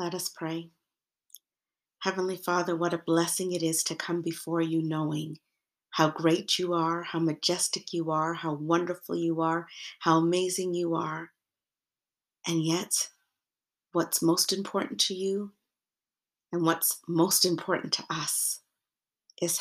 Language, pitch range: English, 165-185 Hz